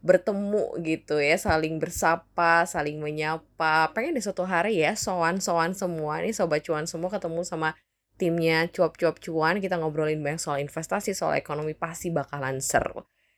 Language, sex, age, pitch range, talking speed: Indonesian, female, 10-29, 165-245 Hz, 150 wpm